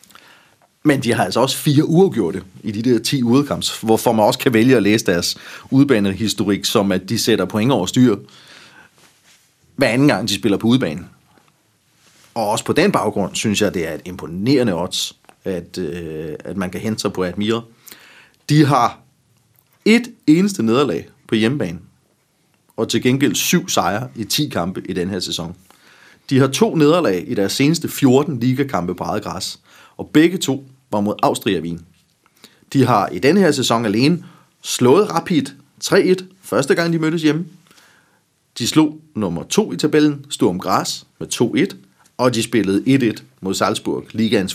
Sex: male